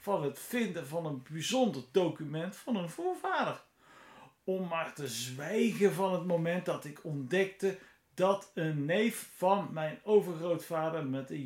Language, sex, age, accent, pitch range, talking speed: Dutch, male, 50-69, Dutch, 160-215 Hz, 145 wpm